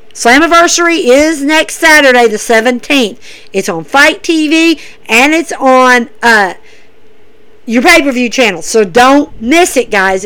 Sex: female